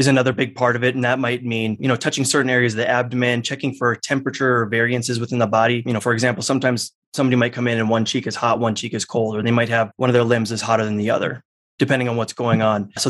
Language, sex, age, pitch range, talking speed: English, male, 20-39, 115-135 Hz, 290 wpm